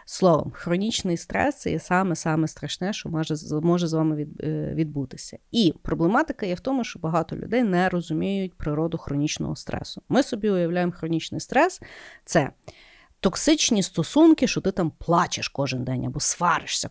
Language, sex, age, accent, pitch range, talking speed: Ukrainian, female, 30-49, native, 160-210 Hz, 150 wpm